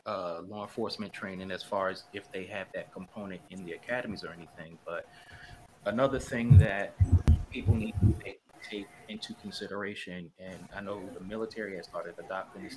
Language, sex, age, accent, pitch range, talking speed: English, male, 30-49, American, 100-130 Hz, 175 wpm